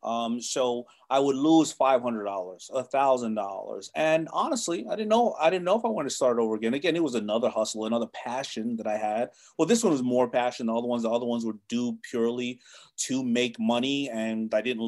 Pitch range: 120-180 Hz